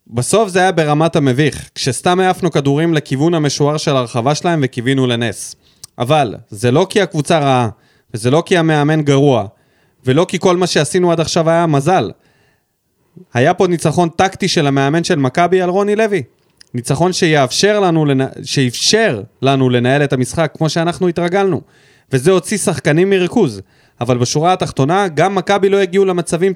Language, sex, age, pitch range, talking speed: Hebrew, male, 20-39, 130-180 Hz, 160 wpm